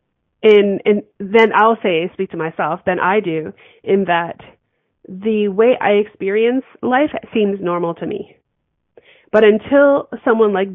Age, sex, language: 30-49, female, English